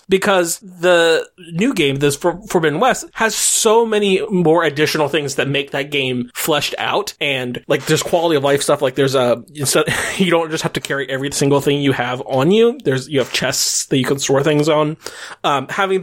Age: 20-39